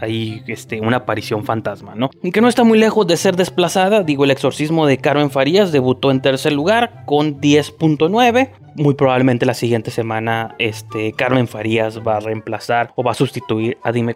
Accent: Mexican